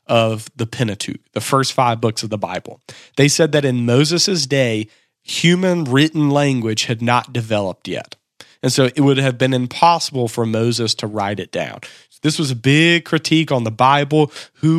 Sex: male